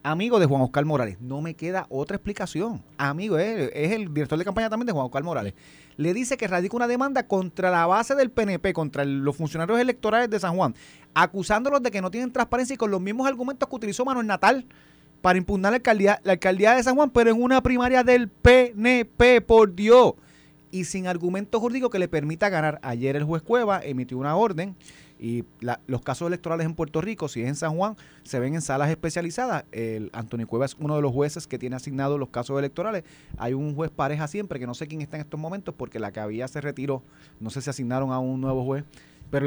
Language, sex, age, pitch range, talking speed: Spanish, male, 30-49, 135-205 Hz, 220 wpm